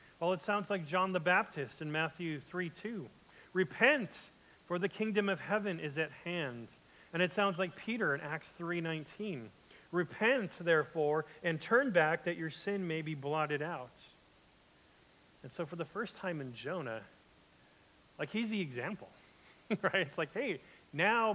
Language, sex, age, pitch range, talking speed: English, male, 40-59, 140-185 Hz, 165 wpm